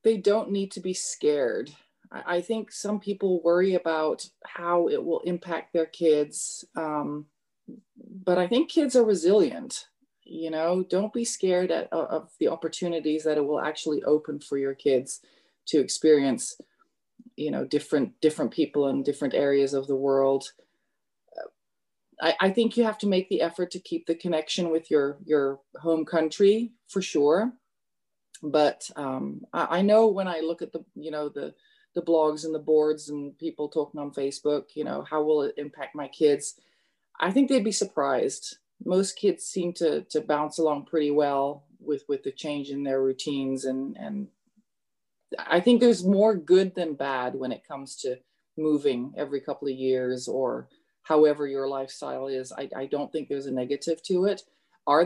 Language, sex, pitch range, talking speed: English, female, 145-205 Hz, 175 wpm